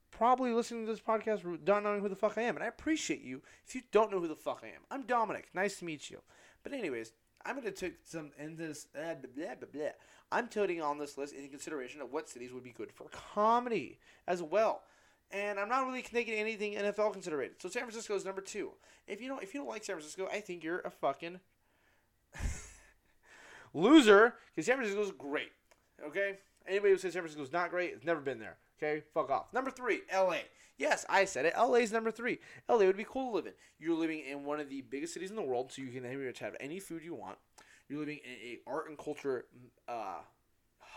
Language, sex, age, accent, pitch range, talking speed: English, male, 30-49, American, 140-215 Hz, 225 wpm